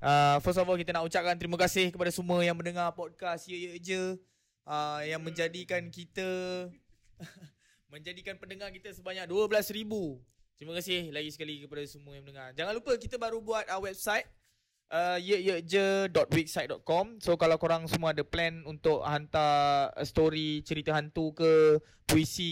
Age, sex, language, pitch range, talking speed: 20-39, male, Malay, 150-180 Hz, 150 wpm